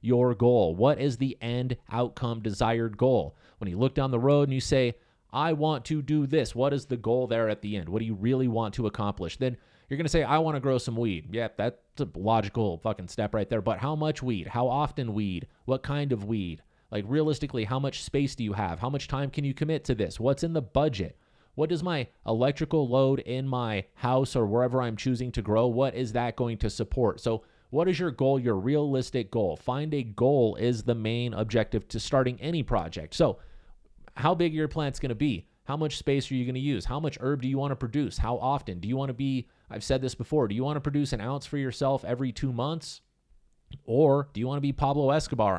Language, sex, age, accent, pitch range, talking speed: English, male, 30-49, American, 115-140 Hz, 240 wpm